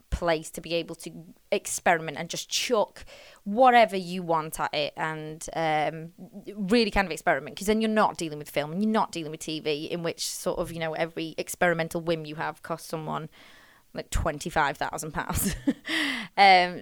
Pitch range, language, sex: 165-245 Hz, English, female